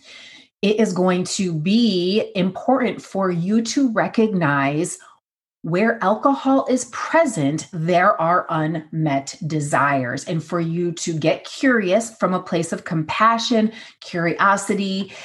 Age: 30-49